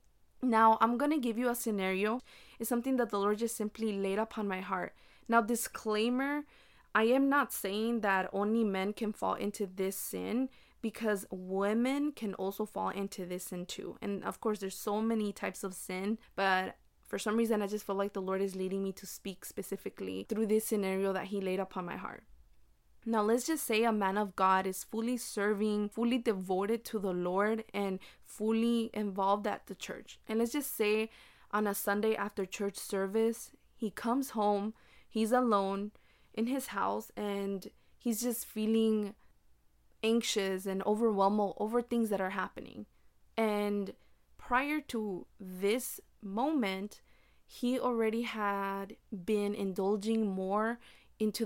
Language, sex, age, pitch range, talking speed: English, female, 20-39, 195-230 Hz, 165 wpm